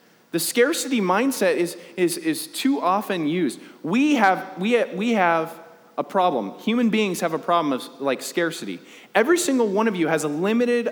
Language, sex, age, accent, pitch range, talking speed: English, male, 30-49, American, 175-245 Hz, 180 wpm